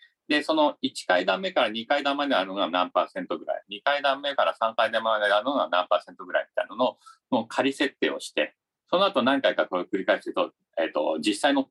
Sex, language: male, Japanese